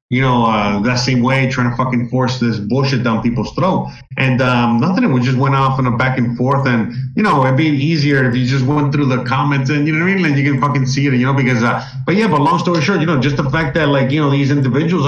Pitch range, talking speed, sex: 125-150 Hz, 290 wpm, male